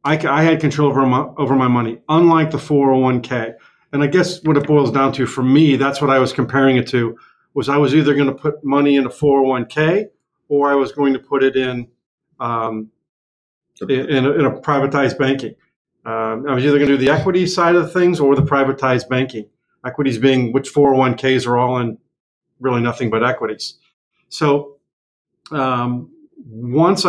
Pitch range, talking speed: 125-145 Hz, 195 wpm